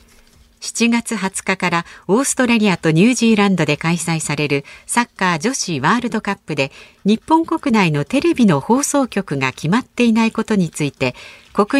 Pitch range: 160-230 Hz